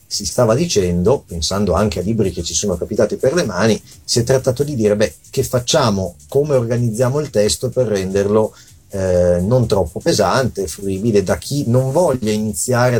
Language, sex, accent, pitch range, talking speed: Italian, male, native, 100-130 Hz, 175 wpm